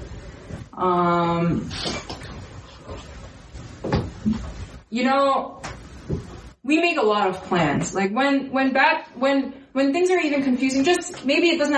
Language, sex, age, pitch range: English, female, 20-39, 215-275 Hz